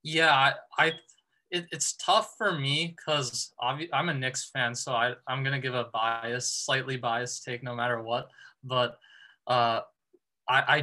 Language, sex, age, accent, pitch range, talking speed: English, male, 20-39, American, 120-135 Hz, 170 wpm